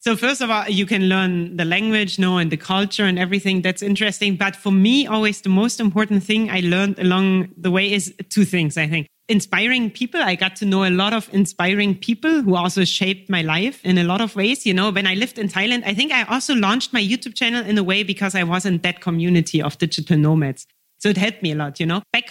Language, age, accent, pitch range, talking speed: English, 30-49, German, 180-230 Hz, 250 wpm